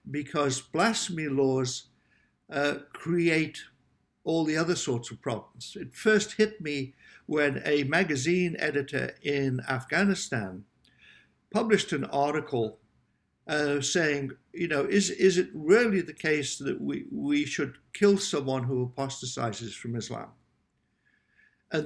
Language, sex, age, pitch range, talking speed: English, male, 60-79, 130-180 Hz, 125 wpm